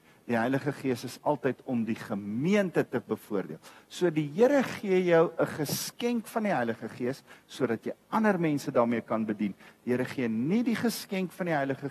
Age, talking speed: 50-69, 190 wpm